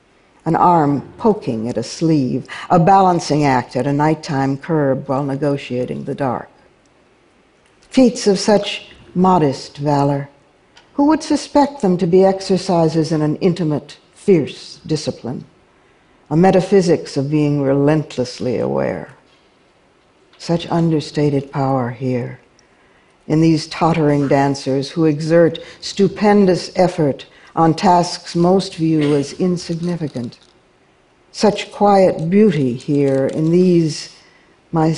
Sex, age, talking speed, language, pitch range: female, 60-79, 110 wpm, English, 140-180 Hz